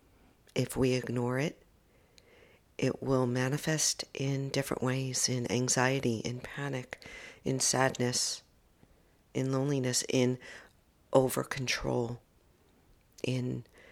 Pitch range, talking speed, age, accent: 110-130 Hz, 90 wpm, 50-69, American